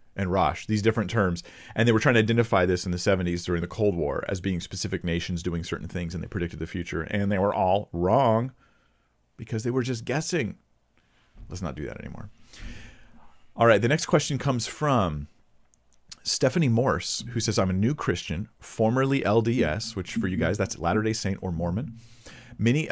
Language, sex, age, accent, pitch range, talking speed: English, male, 40-59, American, 90-115 Hz, 190 wpm